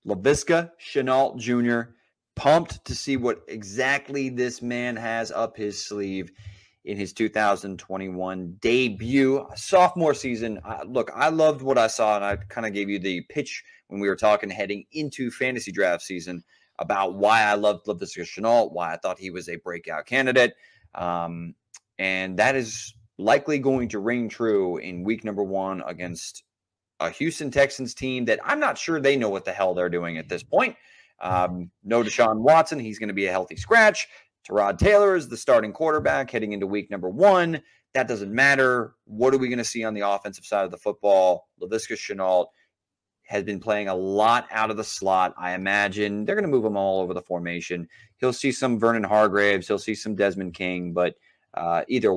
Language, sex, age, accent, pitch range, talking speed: English, male, 30-49, American, 95-125 Hz, 185 wpm